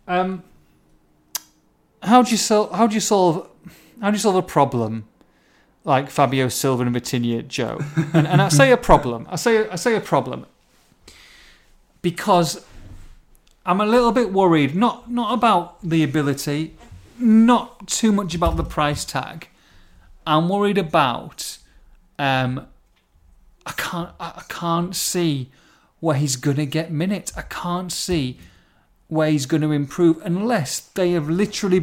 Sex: male